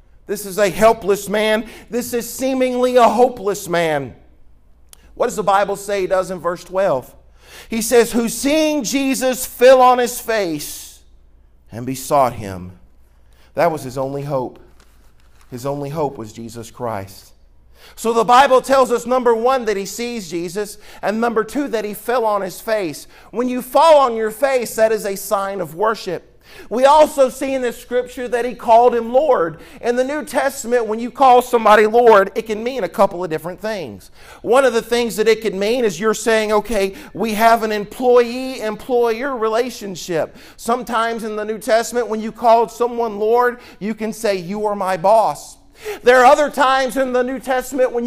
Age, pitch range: 50-69, 195-250 Hz